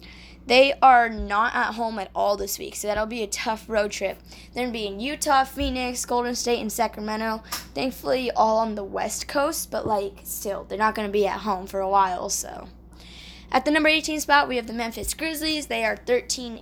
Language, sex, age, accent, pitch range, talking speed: English, female, 10-29, American, 205-245 Hz, 210 wpm